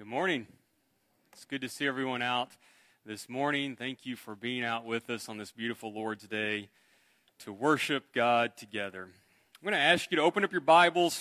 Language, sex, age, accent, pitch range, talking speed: English, male, 30-49, American, 120-175 Hz, 195 wpm